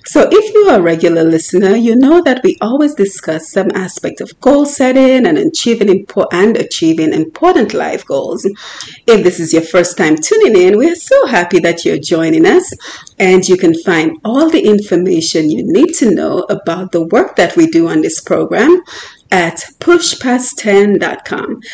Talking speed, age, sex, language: 165 wpm, 30-49, female, English